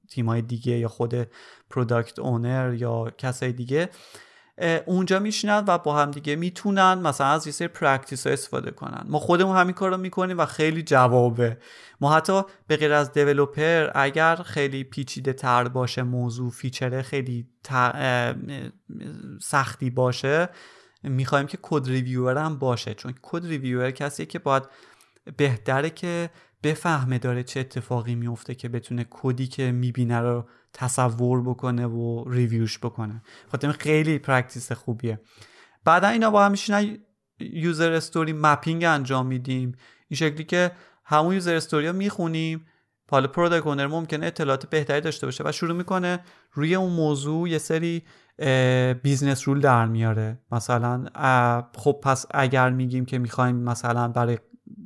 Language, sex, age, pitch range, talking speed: Persian, male, 30-49, 125-160 Hz, 140 wpm